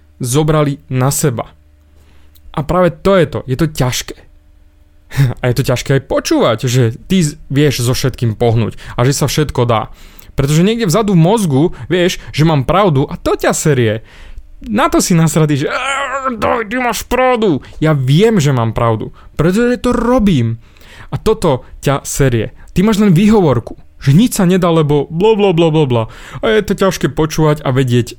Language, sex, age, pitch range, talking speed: Slovak, male, 20-39, 115-165 Hz, 165 wpm